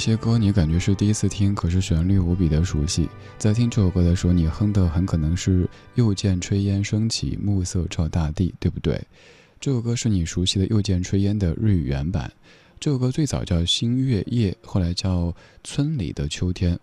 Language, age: Chinese, 20-39